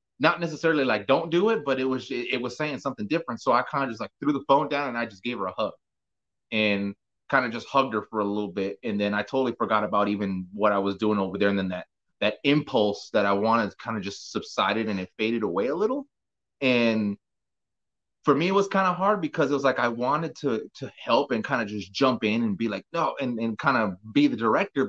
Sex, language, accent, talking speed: male, English, American, 255 wpm